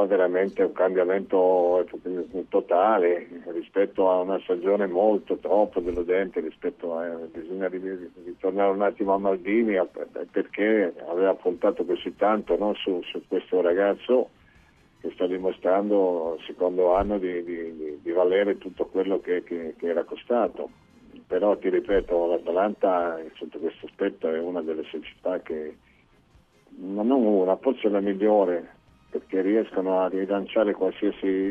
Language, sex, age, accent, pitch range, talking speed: Italian, male, 50-69, native, 90-105 Hz, 130 wpm